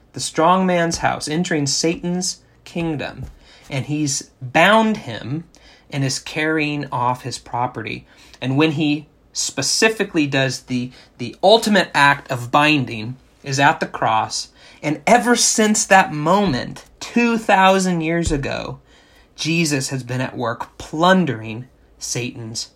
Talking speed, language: 125 wpm, English